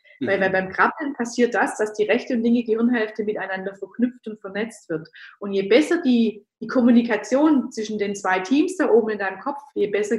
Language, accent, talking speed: German, German, 200 wpm